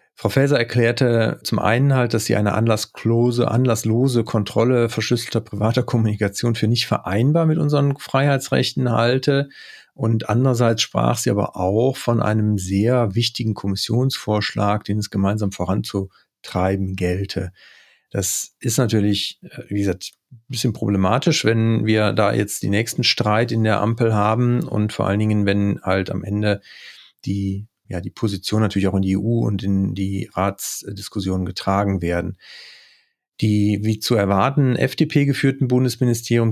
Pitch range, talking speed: 100-120 Hz, 140 wpm